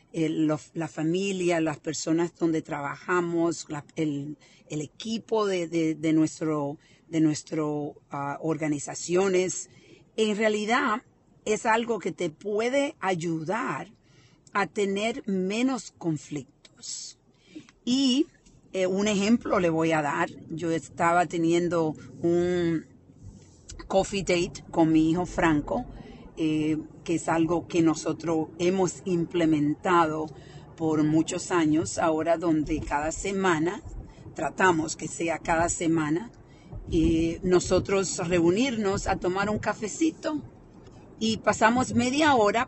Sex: female